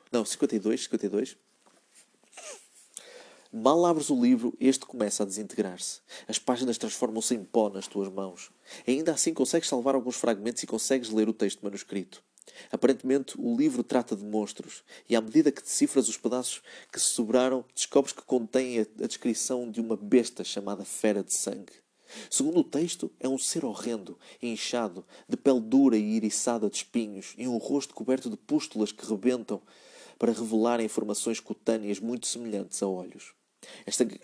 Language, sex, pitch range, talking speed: Portuguese, male, 105-135 Hz, 160 wpm